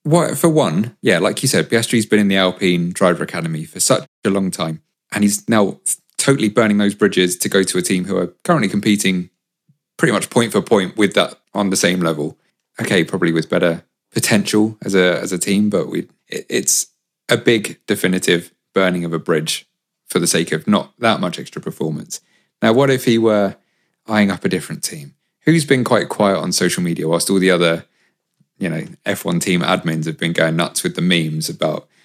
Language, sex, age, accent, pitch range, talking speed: English, male, 30-49, British, 95-130 Hz, 200 wpm